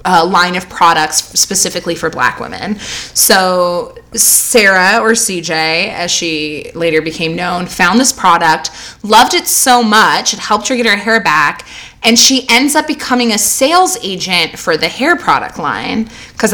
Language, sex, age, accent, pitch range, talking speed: English, female, 20-39, American, 175-235 Hz, 165 wpm